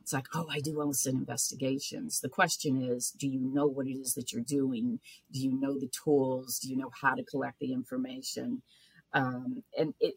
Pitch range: 140-215 Hz